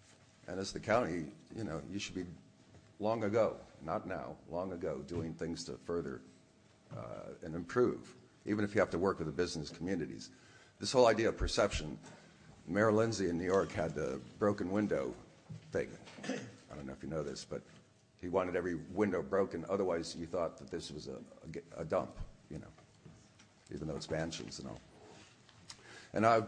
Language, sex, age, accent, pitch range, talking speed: English, male, 50-69, American, 80-105 Hz, 180 wpm